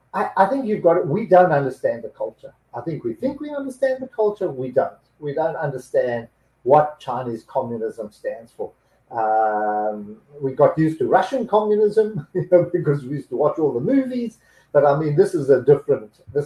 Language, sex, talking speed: English, male, 185 wpm